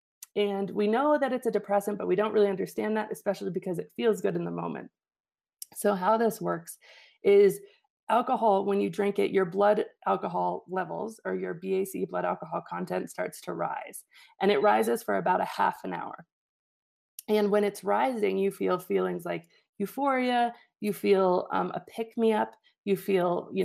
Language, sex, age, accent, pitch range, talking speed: English, female, 30-49, American, 185-215 Hz, 180 wpm